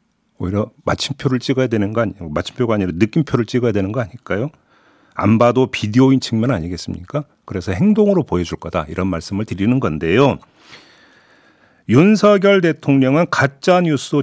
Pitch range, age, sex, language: 120-180 Hz, 40-59, male, Korean